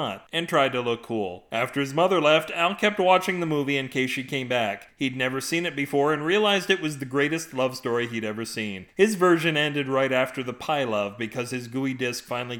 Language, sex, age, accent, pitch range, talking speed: English, male, 40-59, American, 125-165 Hz, 230 wpm